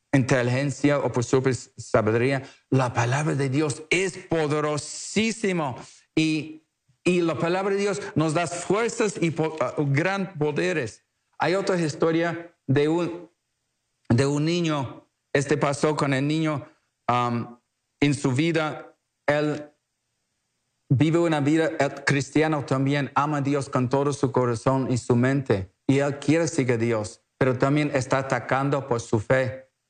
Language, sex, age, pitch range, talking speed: English, male, 50-69, 130-160 Hz, 140 wpm